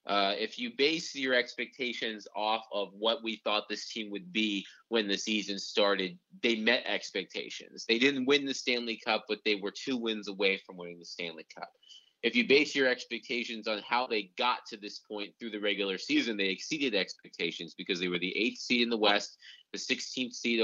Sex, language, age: male, English, 20-39